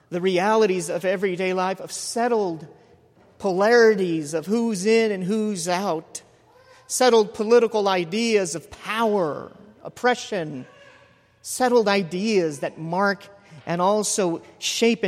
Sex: male